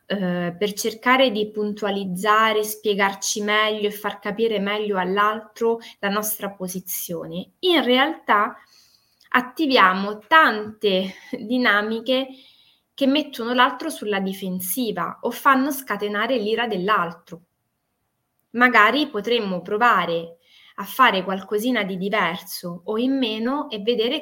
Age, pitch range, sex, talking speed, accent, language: 20-39, 185-245 Hz, female, 105 wpm, native, Italian